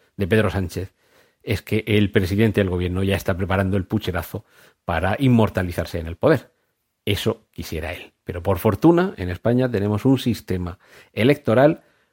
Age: 40-59